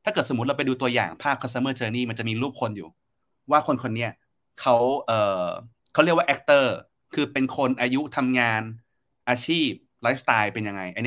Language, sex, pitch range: Thai, male, 110-135 Hz